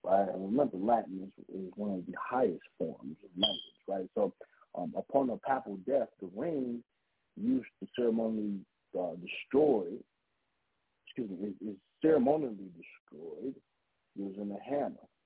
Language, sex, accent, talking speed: English, male, American, 130 wpm